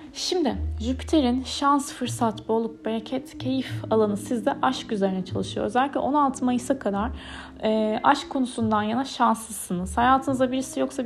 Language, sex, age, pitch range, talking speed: Turkish, female, 30-49, 200-275 Hz, 130 wpm